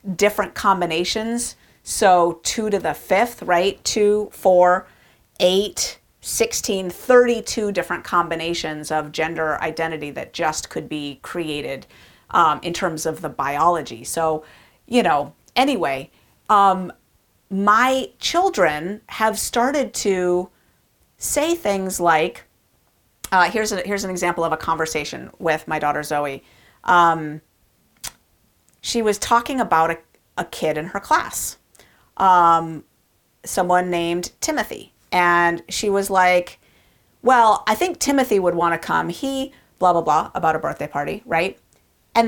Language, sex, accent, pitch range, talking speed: English, female, American, 160-205 Hz, 135 wpm